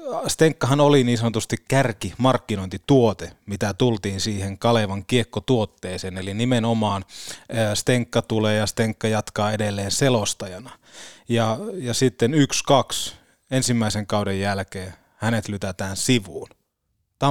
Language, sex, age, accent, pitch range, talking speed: Finnish, male, 20-39, native, 100-120 Hz, 105 wpm